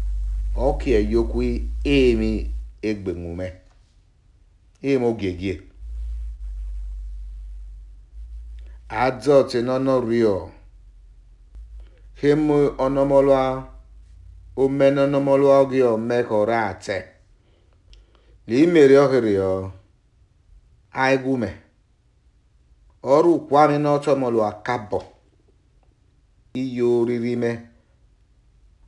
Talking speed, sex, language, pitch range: 95 wpm, male, English, 95-135 Hz